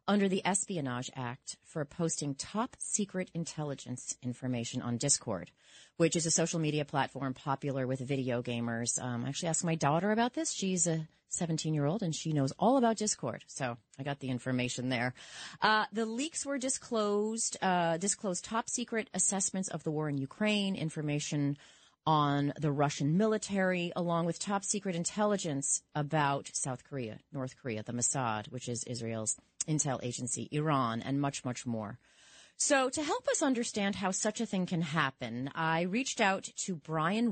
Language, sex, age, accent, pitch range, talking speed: English, female, 30-49, American, 135-200 Hz, 160 wpm